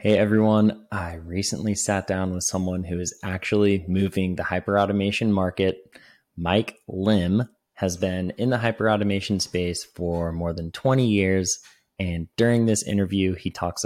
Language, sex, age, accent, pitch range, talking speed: English, male, 20-39, American, 90-110 Hz, 155 wpm